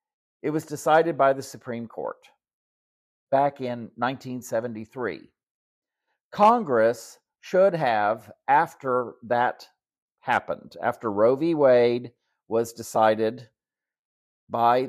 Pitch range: 115-150 Hz